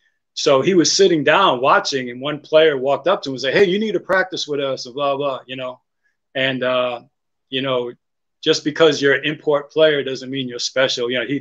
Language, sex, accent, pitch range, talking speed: English, male, American, 120-150 Hz, 230 wpm